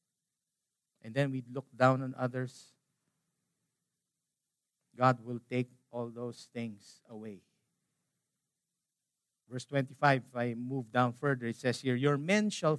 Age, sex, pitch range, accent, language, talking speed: 50-69, male, 125-170 Hz, Filipino, English, 125 wpm